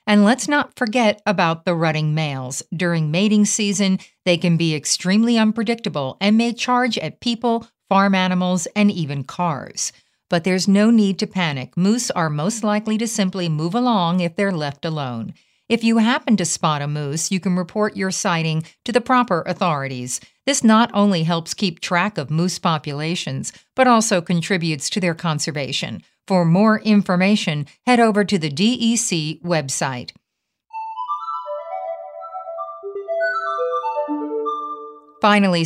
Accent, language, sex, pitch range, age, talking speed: American, English, female, 160-210 Hz, 50-69, 145 wpm